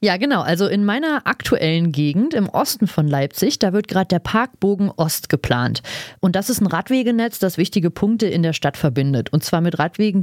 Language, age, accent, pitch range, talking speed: German, 30-49, German, 165-215 Hz, 200 wpm